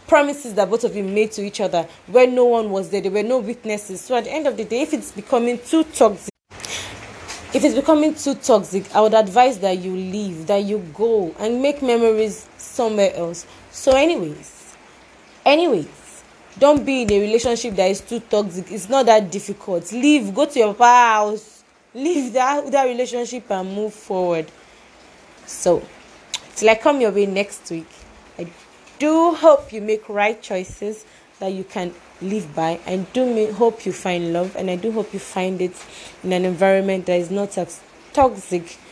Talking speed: 180 wpm